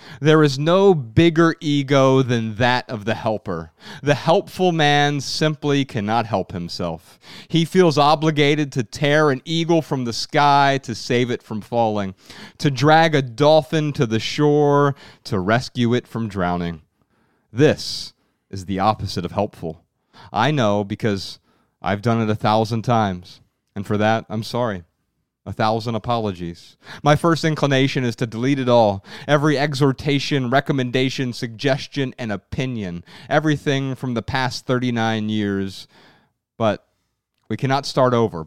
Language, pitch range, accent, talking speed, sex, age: English, 105-145 Hz, American, 145 wpm, male, 30-49